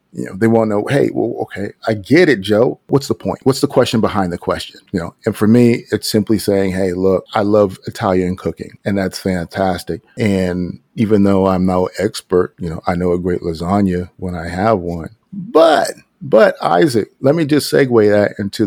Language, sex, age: English, male, 40-59